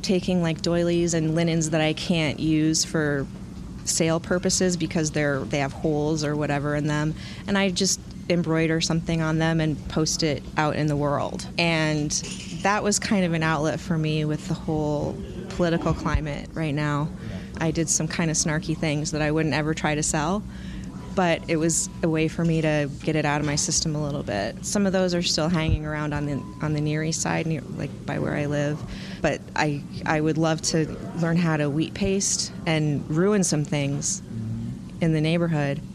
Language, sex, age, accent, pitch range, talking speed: English, female, 30-49, American, 150-175 Hz, 200 wpm